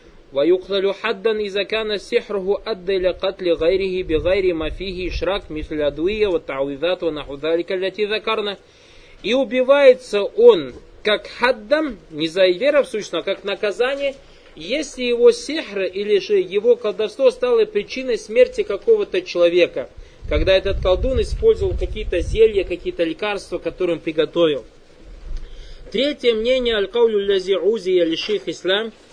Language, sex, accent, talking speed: Russian, male, native, 85 wpm